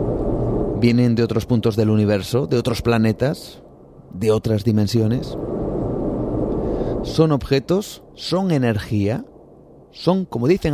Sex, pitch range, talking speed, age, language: male, 105-135 Hz, 105 wpm, 30-49, Spanish